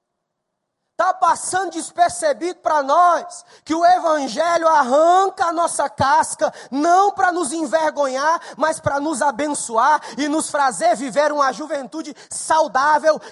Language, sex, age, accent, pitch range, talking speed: Portuguese, male, 20-39, Brazilian, 215-300 Hz, 120 wpm